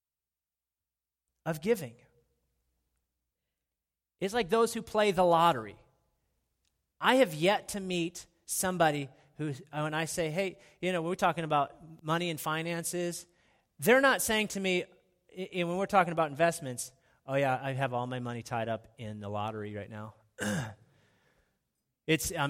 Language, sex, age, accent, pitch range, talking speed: English, male, 30-49, American, 115-175 Hz, 145 wpm